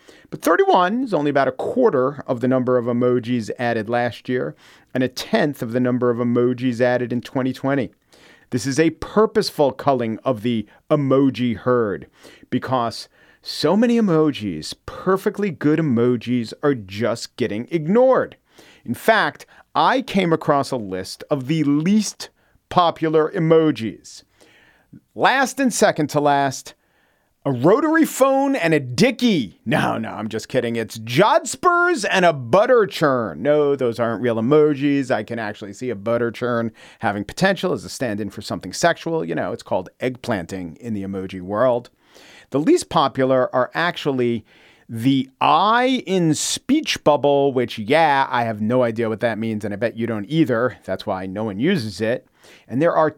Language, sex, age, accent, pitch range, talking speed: English, male, 40-59, American, 115-165 Hz, 160 wpm